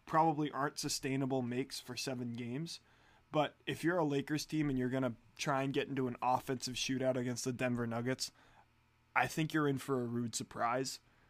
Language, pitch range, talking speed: English, 120-140 Hz, 190 wpm